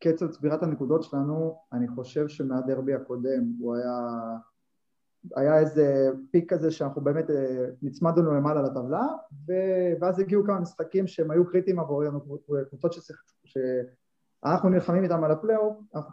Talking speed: 140 wpm